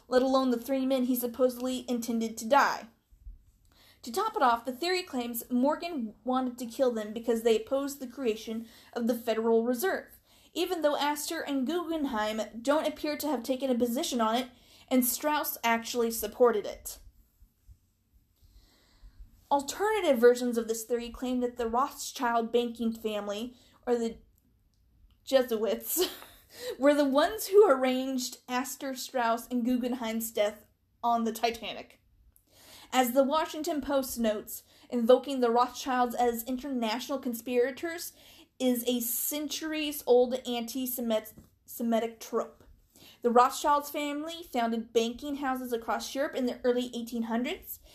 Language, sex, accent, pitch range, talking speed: English, female, American, 225-275 Hz, 135 wpm